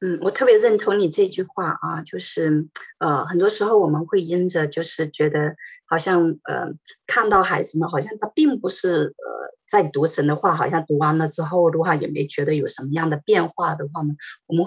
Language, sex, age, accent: Chinese, female, 30-49, native